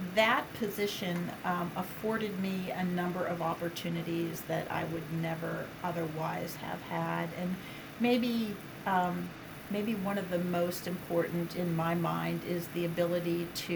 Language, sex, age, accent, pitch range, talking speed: English, female, 50-69, American, 160-180 Hz, 140 wpm